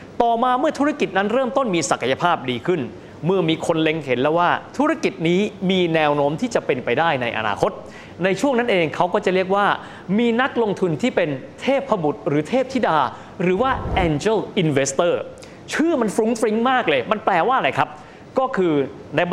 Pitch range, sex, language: 155-220 Hz, male, Thai